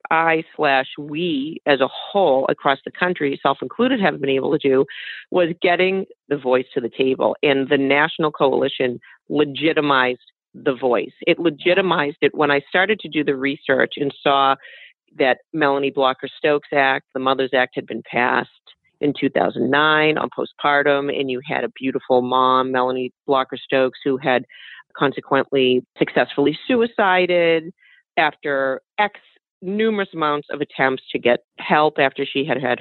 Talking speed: 155 wpm